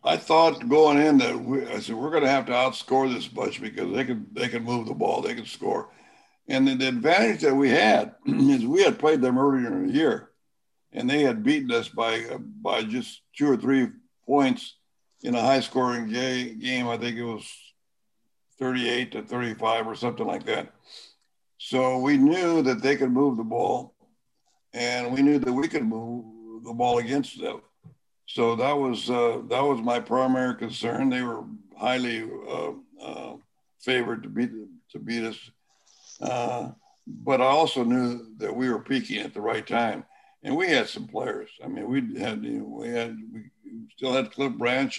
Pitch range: 120-160 Hz